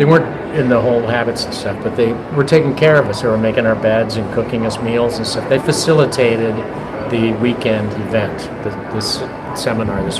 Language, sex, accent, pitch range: English, male, American, 110-135 Hz